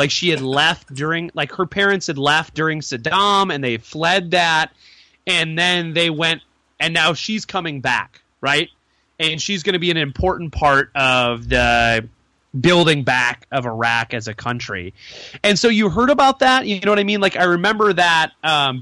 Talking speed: 190 wpm